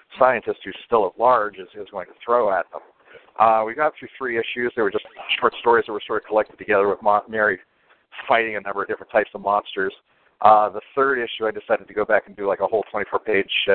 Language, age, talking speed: English, 50-69, 240 wpm